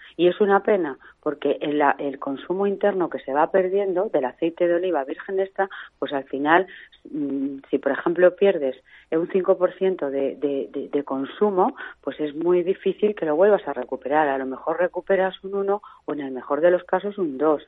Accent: Spanish